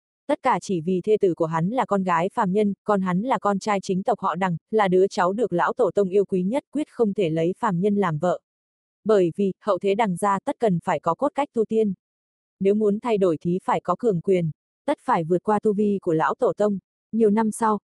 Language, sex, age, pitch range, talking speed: Vietnamese, female, 20-39, 180-220 Hz, 255 wpm